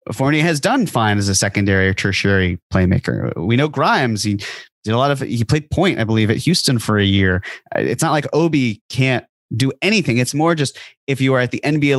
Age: 30-49